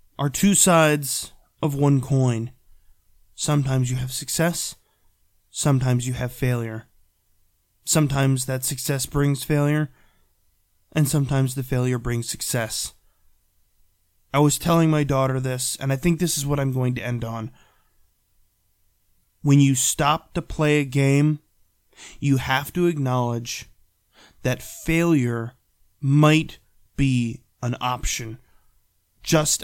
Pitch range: 100-145 Hz